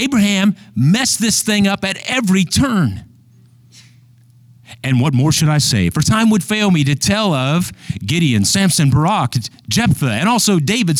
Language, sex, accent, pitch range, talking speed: English, male, American, 120-155 Hz, 160 wpm